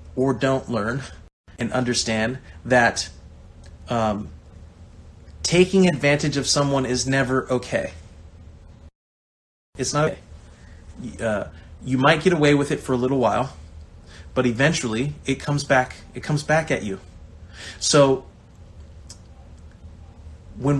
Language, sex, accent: English, male, American